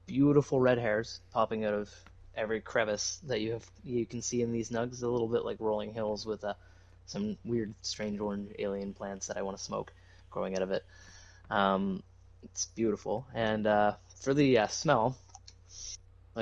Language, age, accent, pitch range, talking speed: English, 20-39, American, 95-115 Hz, 185 wpm